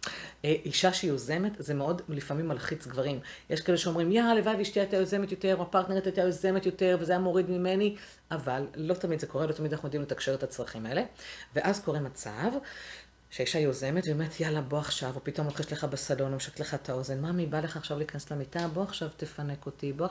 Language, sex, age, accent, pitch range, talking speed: Hebrew, female, 50-69, native, 135-170 Hz, 195 wpm